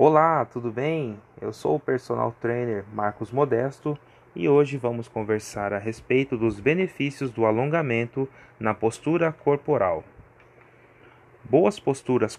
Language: Portuguese